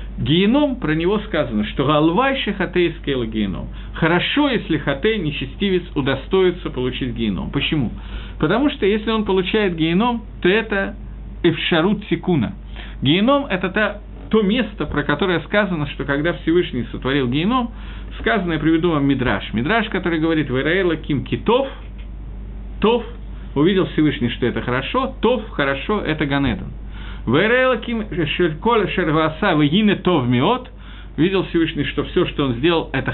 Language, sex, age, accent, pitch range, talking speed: Russian, male, 50-69, native, 140-205 Hz, 135 wpm